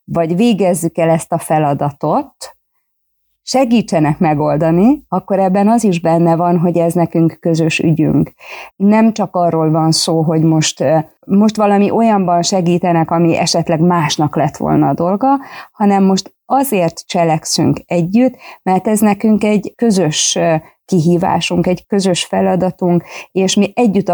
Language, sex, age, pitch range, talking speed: Hungarian, female, 30-49, 160-195 Hz, 135 wpm